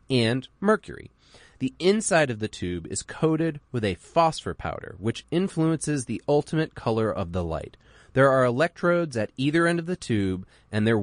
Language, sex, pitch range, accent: English, male, 110-165 Hz, American